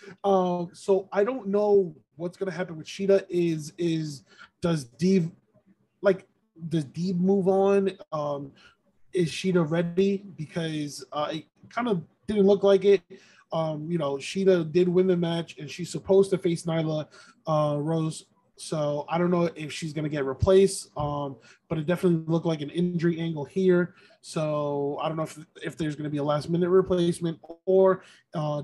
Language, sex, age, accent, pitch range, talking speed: English, male, 20-39, American, 160-185 Hz, 175 wpm